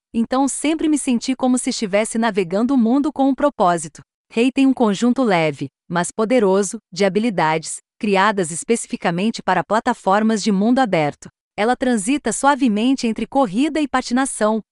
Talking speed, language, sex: 145 wpm, Portuguese, female